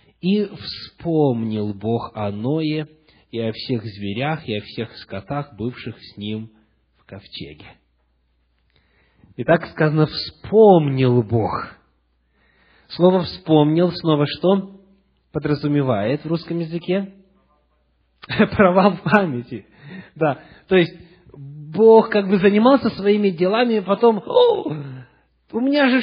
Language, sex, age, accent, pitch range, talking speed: Russian, male, 20-39, native, 125-190 Hz, 110 wpm